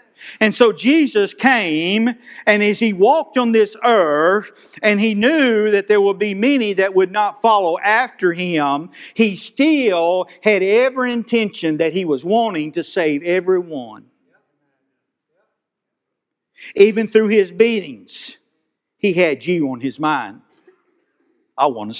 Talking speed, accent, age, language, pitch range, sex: 135 wpm, American, 50-69, English, 170-245 Hz, male